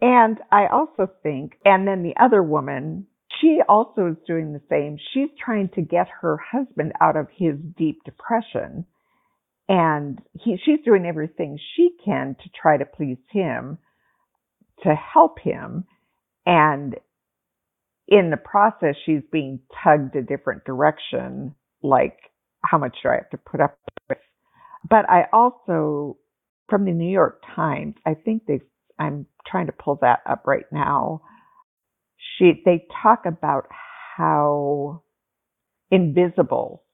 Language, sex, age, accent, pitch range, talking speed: English, female, 50-69, American, 150-210 Hz, 140 wpm